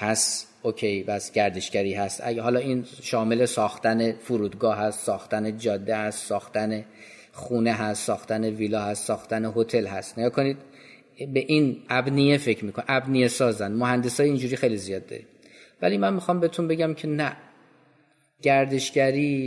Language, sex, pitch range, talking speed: Persian, male, 115-135 Hz, 140 wpm